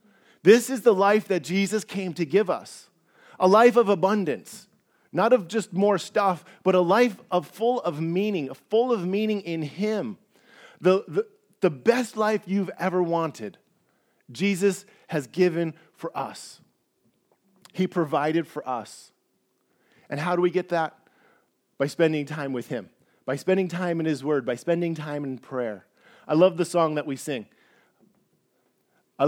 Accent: American